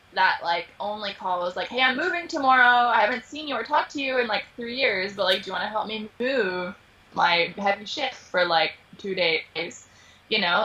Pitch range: 180-235 Hz